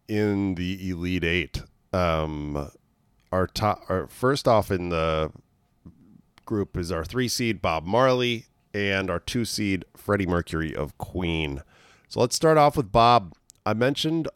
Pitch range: 85-105 Hz